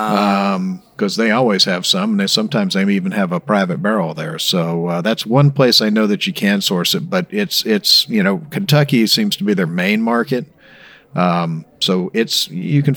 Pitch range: 115-190 Hz